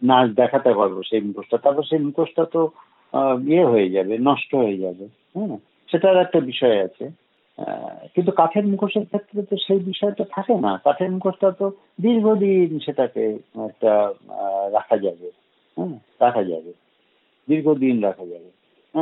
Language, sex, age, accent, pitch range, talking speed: Bengali, male, 50-69, native, 120-190 Hz, 65 wpm